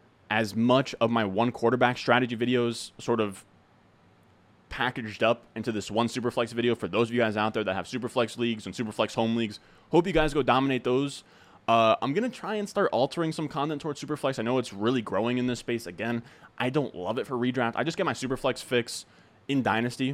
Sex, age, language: male, 20-39, English